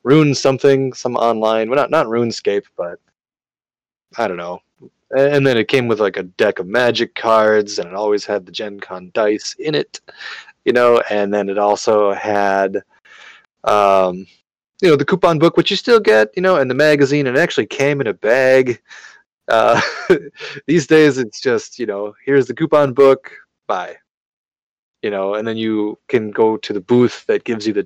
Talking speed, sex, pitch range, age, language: 190 wpm, male, 105-150 Hz, 30-49, English